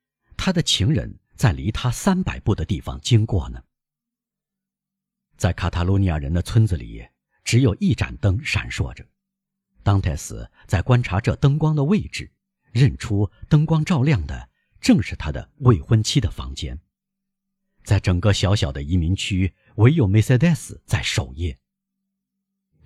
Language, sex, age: Chinese, male, 50-69